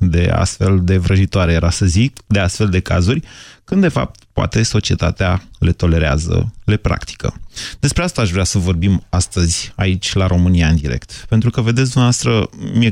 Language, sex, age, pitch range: Romanian, male, 30-49, 95-115 Hz